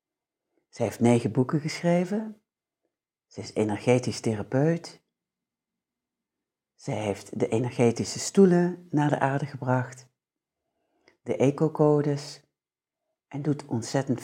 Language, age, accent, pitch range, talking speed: Dutch, 60-79, Dutch, 115-150 Hz, 95 wpm